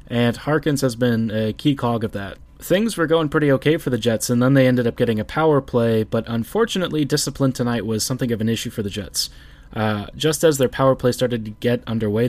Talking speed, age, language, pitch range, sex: 235 wpm, 20-39, English, 110-135 Hz, male